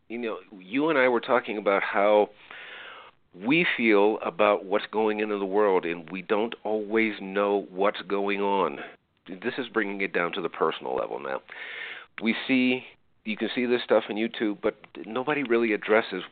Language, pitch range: English, 100-120 Hz